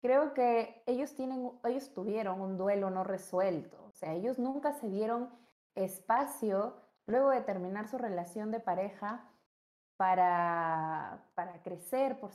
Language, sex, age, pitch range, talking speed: Spanish, female, 20-39, 190-235 Hz, 135 wpm